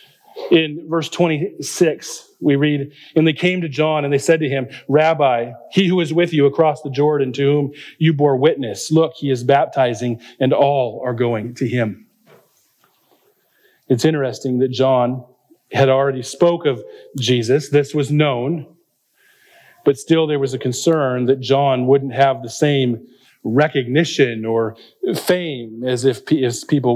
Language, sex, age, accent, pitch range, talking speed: English, male, 40-59, American, 130-155 Hz, 155 wpm